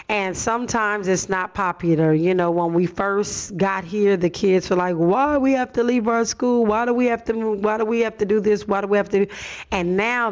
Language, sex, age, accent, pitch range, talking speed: English, female, 40-59, American, 175-210 Hz, 270 wpm